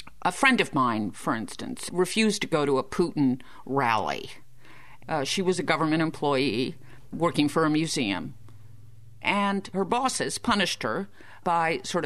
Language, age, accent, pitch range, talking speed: English, 50-69, American, 155-220 Hz, 150 wpm